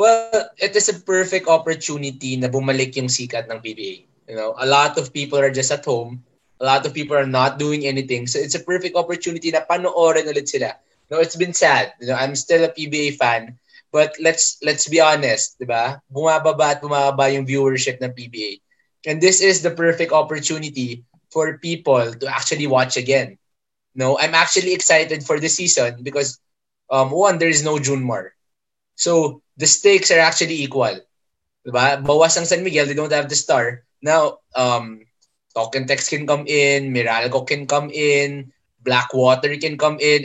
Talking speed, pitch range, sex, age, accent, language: 175 wpm, 130-165 Hz, male, 20-39, Filipino, English